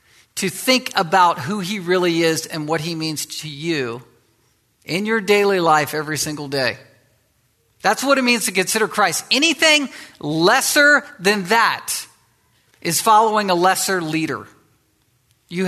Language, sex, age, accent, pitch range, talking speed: English, male, 50-69, American, 160-210 Hz, 140 wpm